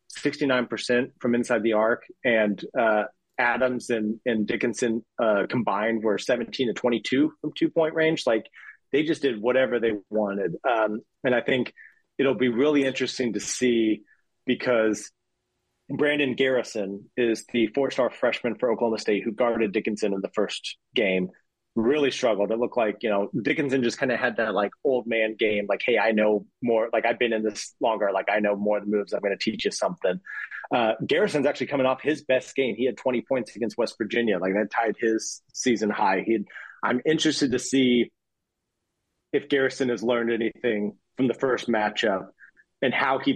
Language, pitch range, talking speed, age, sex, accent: English, 110-130 Hz, 185 wpm, 30-49, male, American